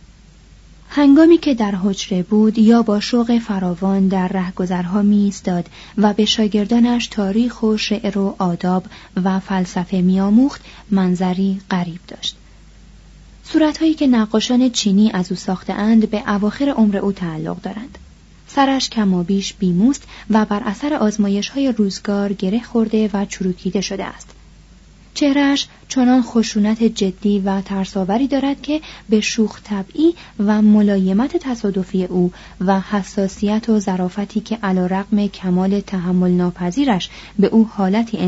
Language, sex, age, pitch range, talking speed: Persian, female, 30-49, 190-240 Hz, 130 wpm